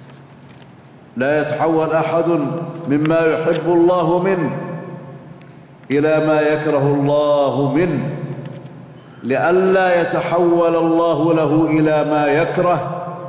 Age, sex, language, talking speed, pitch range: 50-69, male, Arabic, 85 wpm, 150-170 Hz